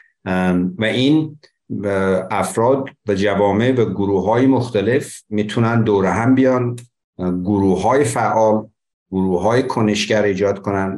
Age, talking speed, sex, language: 60-79, 115 wpm, male, Persian